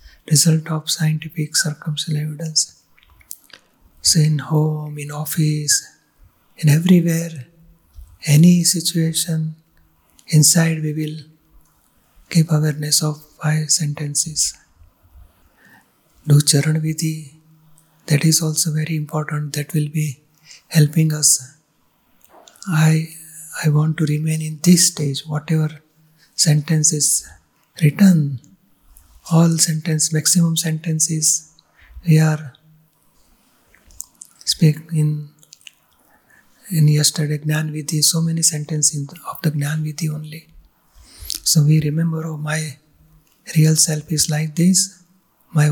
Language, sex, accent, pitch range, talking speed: Gujarati, male, native, 150-160 Hz, 100 wpm